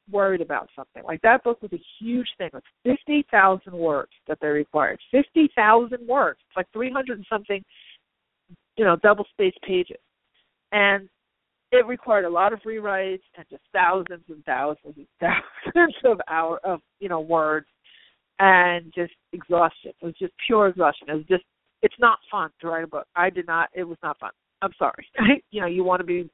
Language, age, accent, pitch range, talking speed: English, 50-69, American, 165-200 Hz, 190 wpm